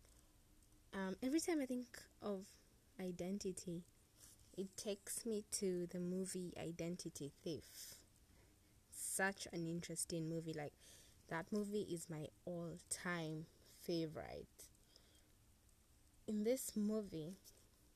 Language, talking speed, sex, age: English, 95 wpm, female, 20-39